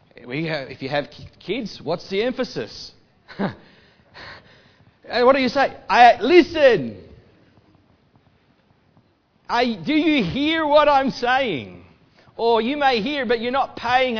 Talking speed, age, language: 130 wpm, 40-59, English